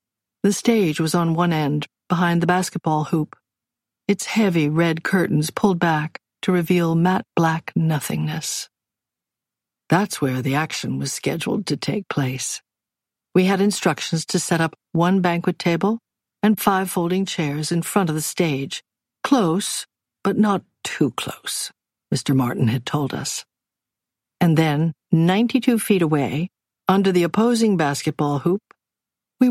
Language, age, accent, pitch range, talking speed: English, 60-79, American, 150-195 Hz, 140 wpm